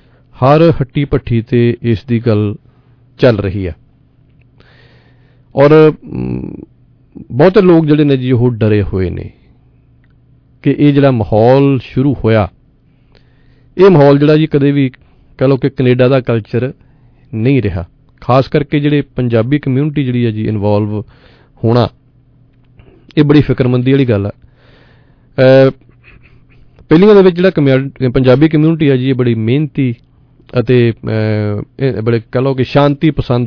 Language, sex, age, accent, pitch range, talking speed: English, male, 40-59, Indian, 115-135 Hz, 75 wpm